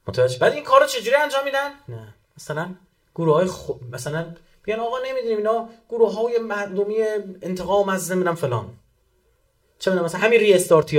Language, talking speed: Persian, 155 wpm